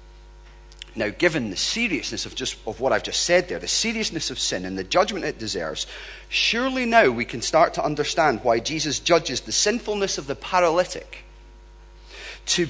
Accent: British